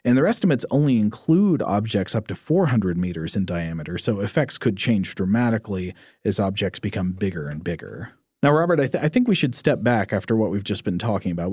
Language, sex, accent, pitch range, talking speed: English, male, American, 105-130 Hz, 205 wpm